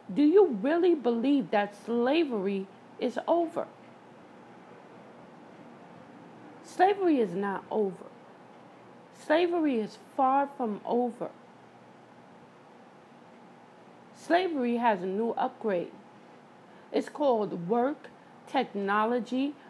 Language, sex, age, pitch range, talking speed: English, female, 50-69, 215-290 Hz, 80 wpm